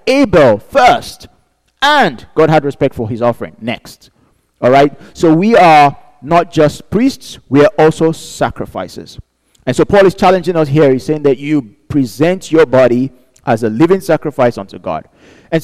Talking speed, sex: 165 wpm, male